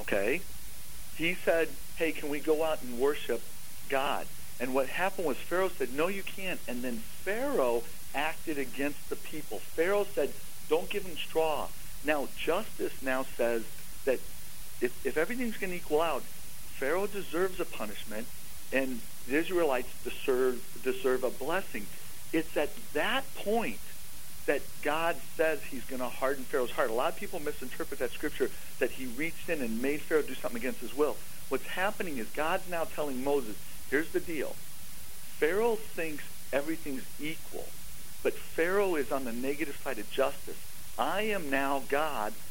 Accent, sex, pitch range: American, male, 135-185 Hz